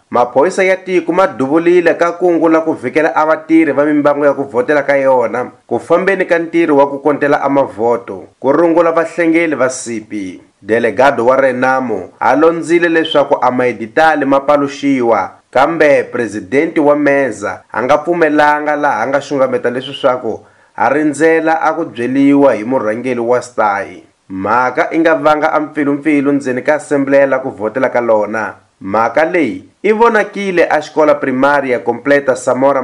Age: 30-49